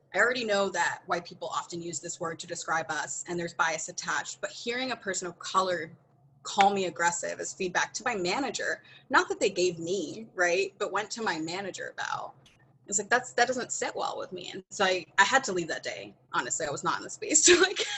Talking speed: 235 wpm